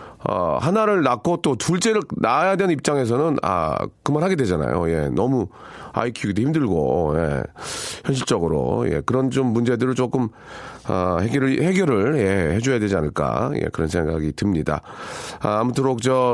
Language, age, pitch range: Korean, 40-59, 90-135 Hz